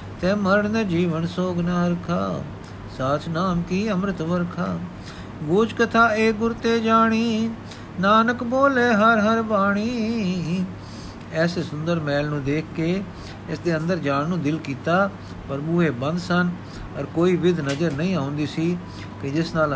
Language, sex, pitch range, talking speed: Punjabi, male, 145-195 Hz, 150 wpm